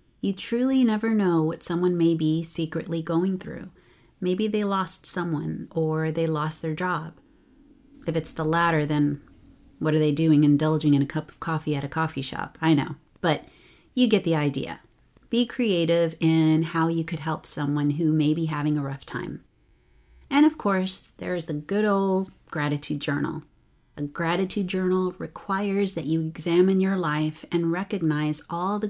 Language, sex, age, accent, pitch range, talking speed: English, female, 30-49, American, 150-185 Hz, 170 wpm